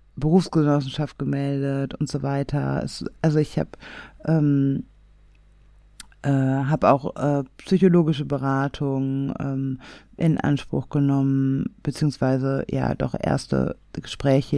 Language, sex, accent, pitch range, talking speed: German, female, German, 140-170 Hz, 105 wpm